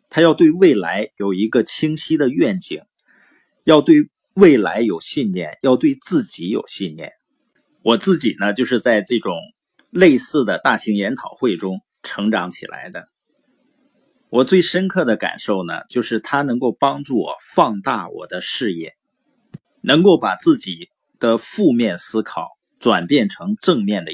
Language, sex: Chinese, male